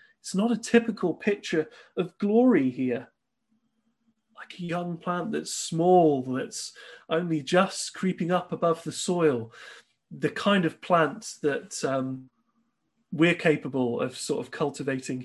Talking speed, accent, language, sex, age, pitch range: 135 wpm, British, English, male, 30-49, 145-195 Hz